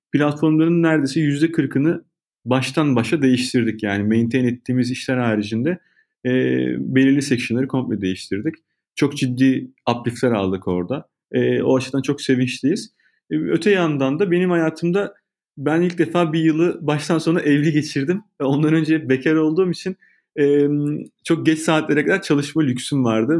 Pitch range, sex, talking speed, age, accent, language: 125-160 Hz, male, 140 wpm, 30-49, native, Turkish